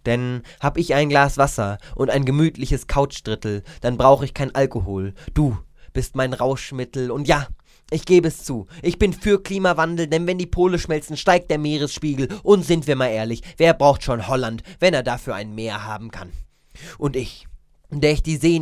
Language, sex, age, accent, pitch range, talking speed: German, male, 20-39, German, 120-160 Hz, 190 wpm